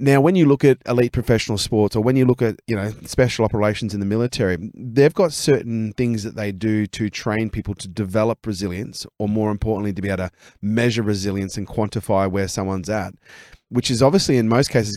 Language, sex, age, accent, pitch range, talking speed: English, male, 30-49, Australian, 105-125 Hz, 215 wpm